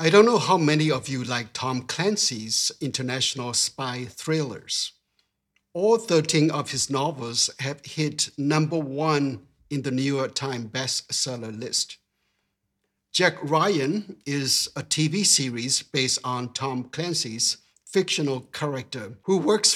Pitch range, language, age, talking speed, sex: 130-155 Hz, English, 60-79, 130 wpm, male